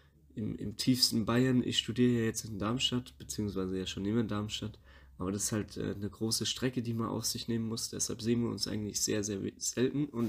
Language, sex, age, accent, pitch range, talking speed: German, male, 20-39, German, 105-120 Hz, 225 wpm